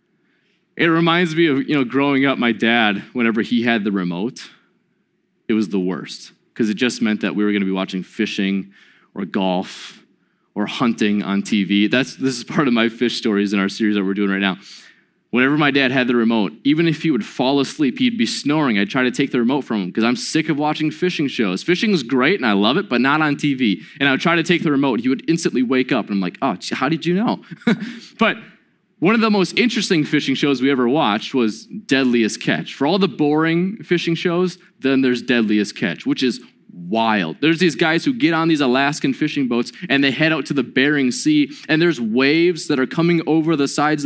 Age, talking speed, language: 20-39, 230 wpm, English